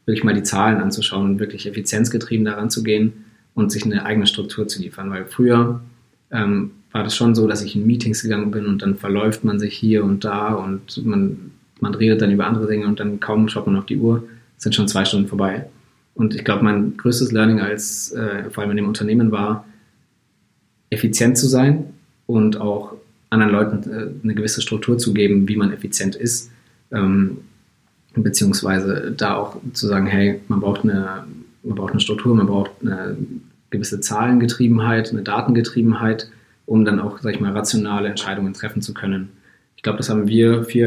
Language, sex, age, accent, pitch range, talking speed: German, male, 20-39, German, 105-115 Hz, 190 wpm